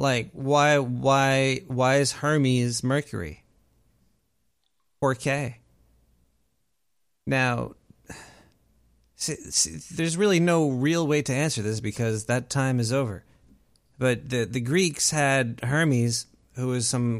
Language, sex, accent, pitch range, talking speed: English, male, American, 120-150 Hz, 120 wpm